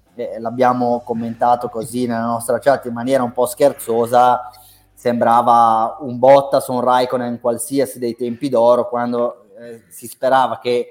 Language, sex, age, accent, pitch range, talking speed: Italian, male, 30-49, native, 115-135 Hz, 145 wpm